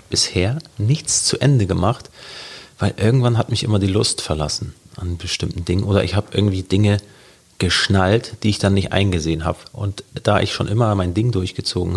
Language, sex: German, male